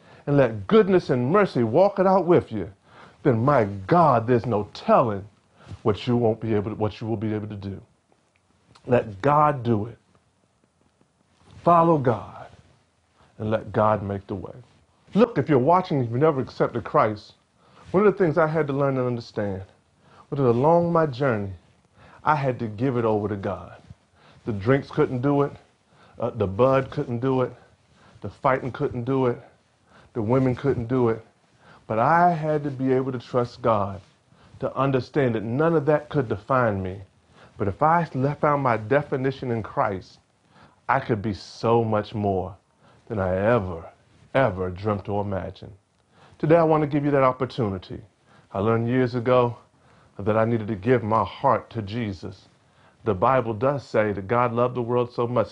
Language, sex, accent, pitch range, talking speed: English, male, American, 105-135 Hz, 180 wpm